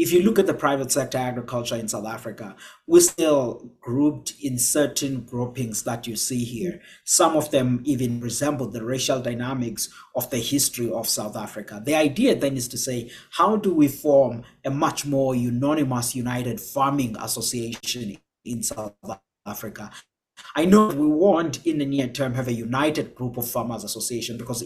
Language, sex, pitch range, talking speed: English, male, 120-145 Hz, 175 wpm